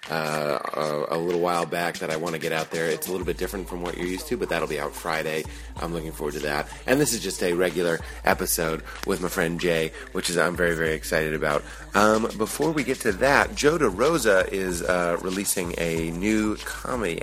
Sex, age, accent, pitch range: male, 30-49, American, 85-105 Hz